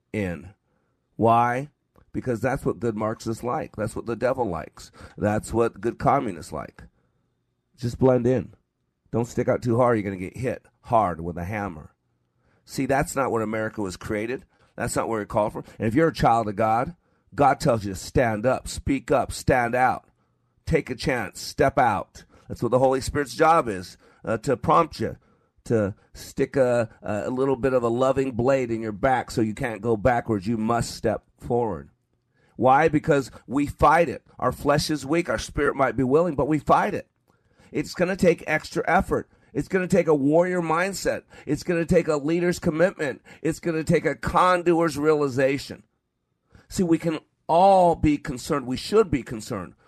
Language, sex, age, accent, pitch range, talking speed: English, male, 40-59, American, 110-155 Hz, 190 wpm